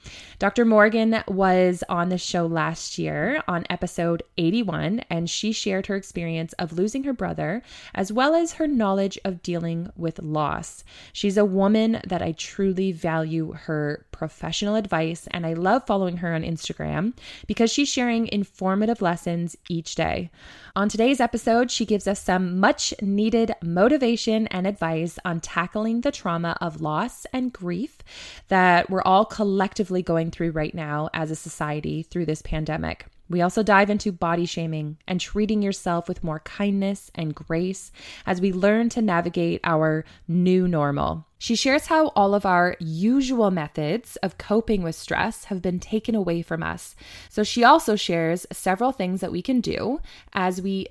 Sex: female